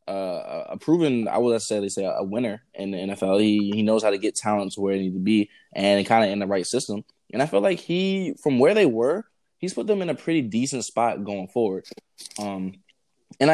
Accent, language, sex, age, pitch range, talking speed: American, English, male, 20-39, 105-130 Hz, 240 wpm